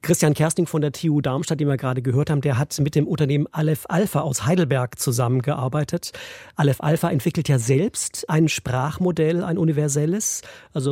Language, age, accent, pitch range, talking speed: German, 40-59, German, 135-160 Hz, 170 wpm